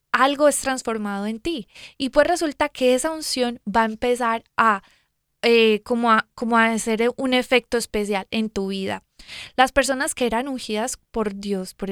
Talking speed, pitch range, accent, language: 175 wpm, 210-245 Hz, Colombian, Spanish